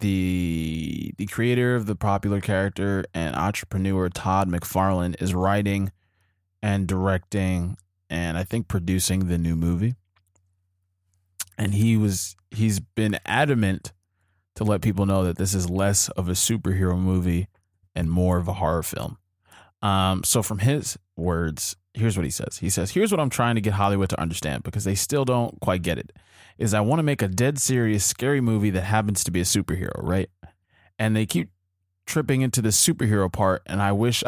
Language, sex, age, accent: English, male, 20-39, American